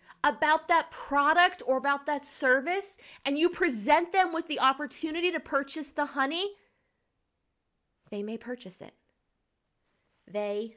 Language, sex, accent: English, female, American